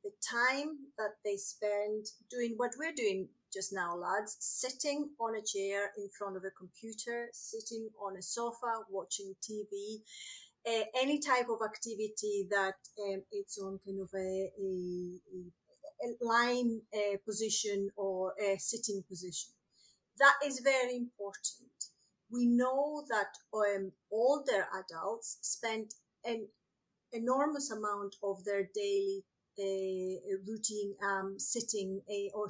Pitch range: 195-245 Hz